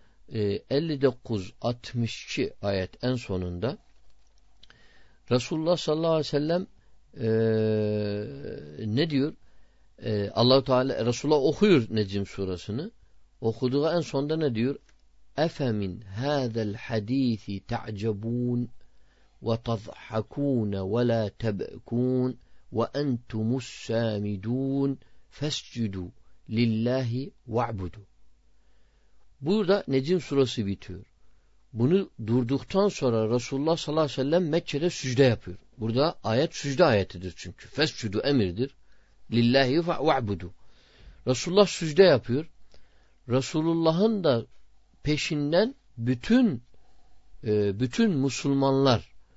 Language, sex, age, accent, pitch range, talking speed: Turkish, male, 50-69, native, 105-140 Hz, 90 wpm